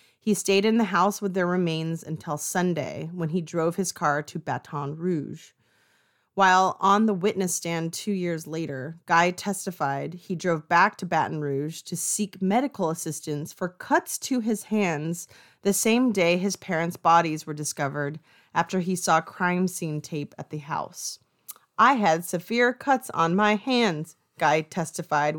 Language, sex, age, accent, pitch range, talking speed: English, female, 30-49, American, 160-205 Hz, 165 wpm